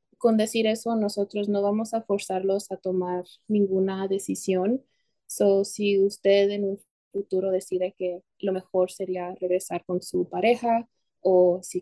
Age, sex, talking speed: 20-39, female, 145 wpm